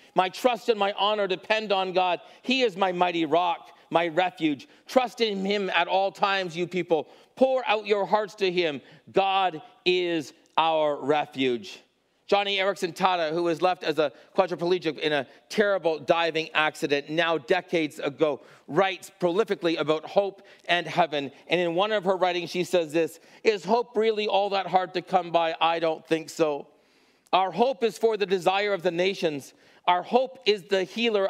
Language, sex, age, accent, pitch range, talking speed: English, male, 40-59, American, 165-200 Hz, 175 wpm